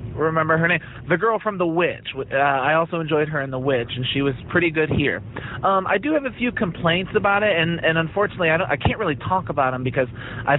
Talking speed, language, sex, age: 250 wpm, English, male, 30-49